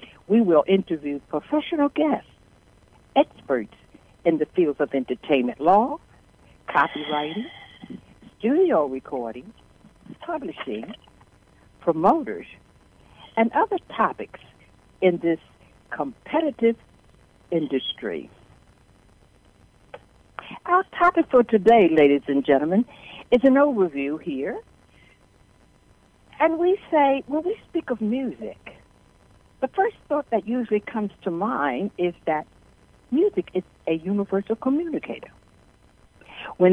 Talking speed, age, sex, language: 95 wpm, 60-79, female, English